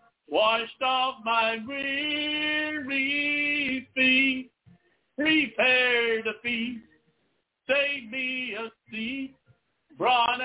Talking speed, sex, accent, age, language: 75 wpm, male, American, 60-79, English